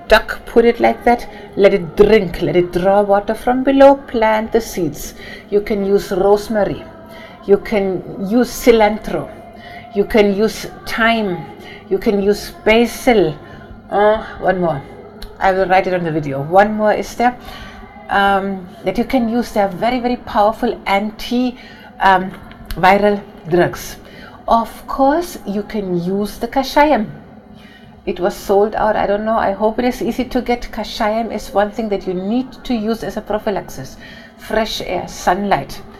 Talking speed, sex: 160 wpm, female